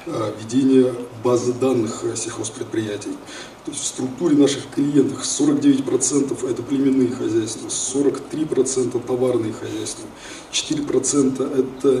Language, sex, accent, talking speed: Russian, male, native, 85 wpm